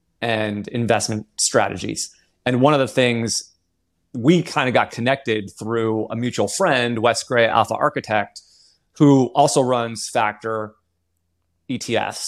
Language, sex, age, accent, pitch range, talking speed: English, male, 20-39, American, 110-135 Hz, 125 wpm